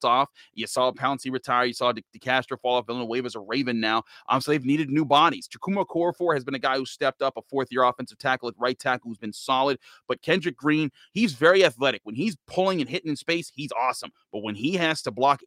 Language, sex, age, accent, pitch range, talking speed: English, male, 30-49, American, 125-155 Hz, 245 wpm